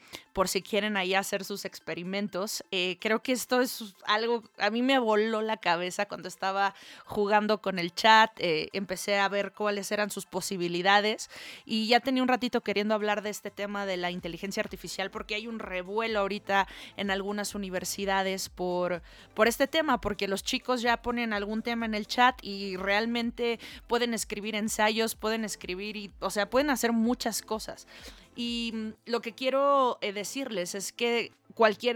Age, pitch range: 20-39, 195-235 Hz